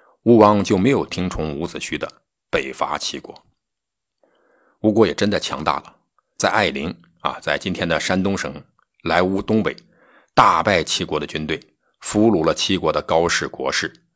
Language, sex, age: Chinese, male, 50-69